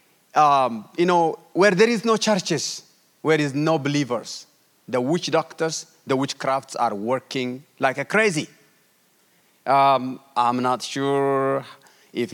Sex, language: male, English